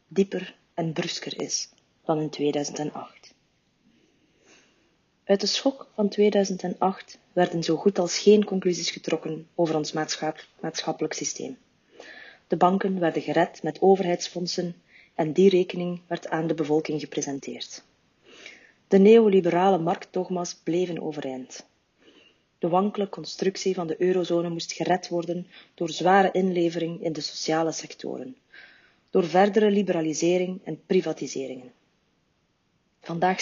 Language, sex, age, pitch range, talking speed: Dutch, female, 30-49, 165-205 Hz, 115 wpm